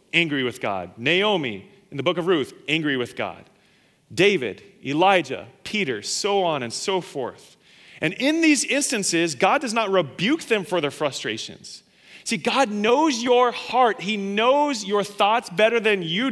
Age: 30-49